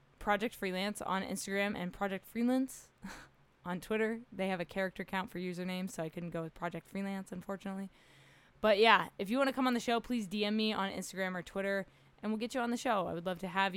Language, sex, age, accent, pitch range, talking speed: English, female, 20-39, American, 185-225 Hz, 230 wpm